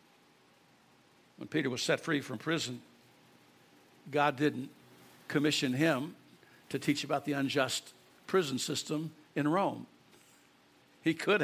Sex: male